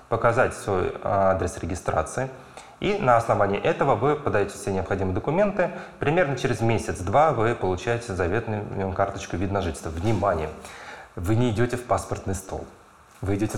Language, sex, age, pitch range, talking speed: Russian, male, 30-49, 95-120 Hz, 140 wpm